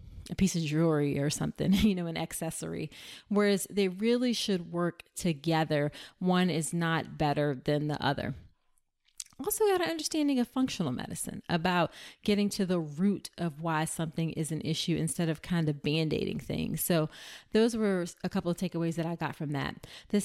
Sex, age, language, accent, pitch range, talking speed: female, 30-49, English, American, 160-190 Hz, 180 wpm